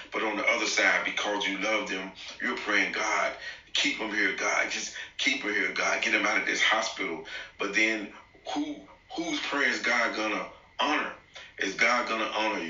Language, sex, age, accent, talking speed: English, male, 40-59, American, 195 wpm